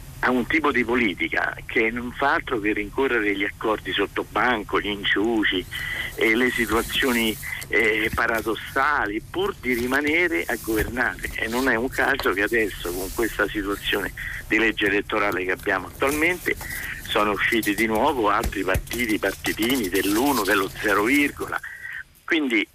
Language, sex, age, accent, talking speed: Italian, male, 50-69, native, 145 wpm